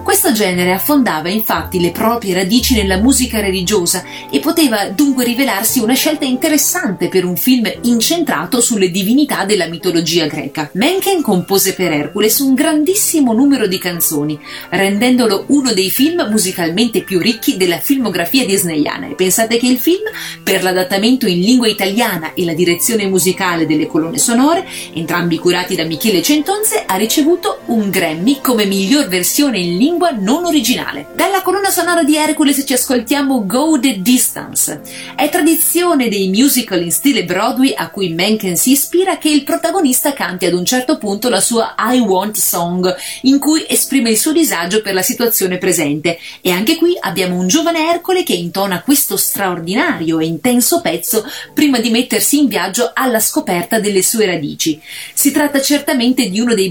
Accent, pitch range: native, 185-285 Hz